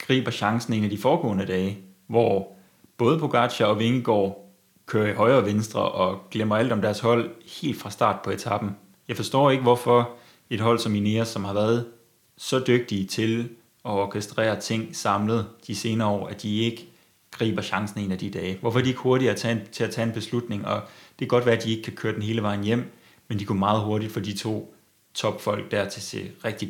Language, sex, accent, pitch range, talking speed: Danish, male, native, 105-115 Hz, 220 wpm